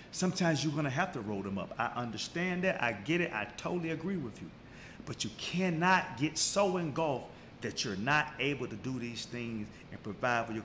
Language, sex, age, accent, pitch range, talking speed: English, male, 40-59, American, 140-200 Hz, 210 wpm